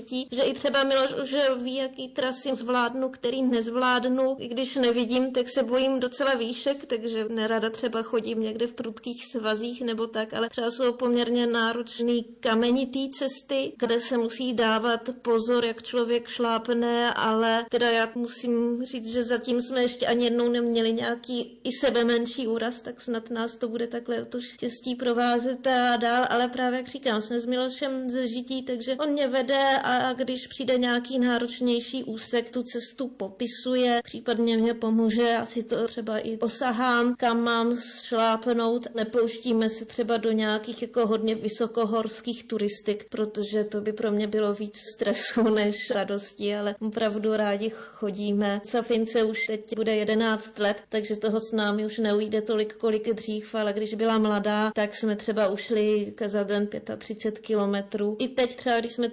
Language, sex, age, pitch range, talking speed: Slovak, female, 30-49, 220-245 Hz, 165 wpm